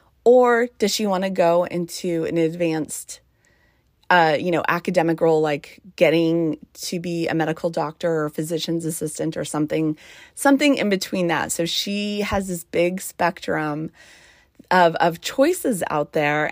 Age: 30-49